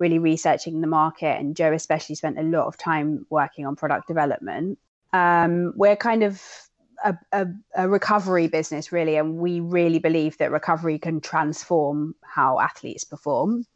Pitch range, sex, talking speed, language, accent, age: 155-180 Hz, female, 160 wpm, English, British, 30-49